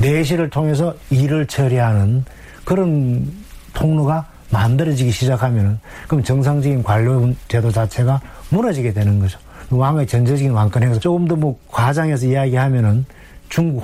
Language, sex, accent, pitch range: Korean, male, native, 120-155 Hz